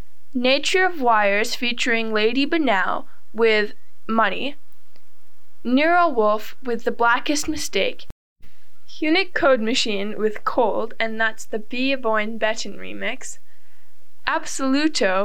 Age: 10-29